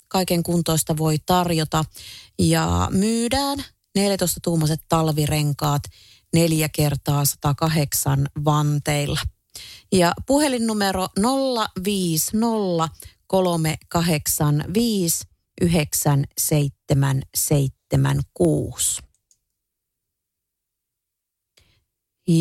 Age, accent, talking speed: 30-49, native, 40 wpm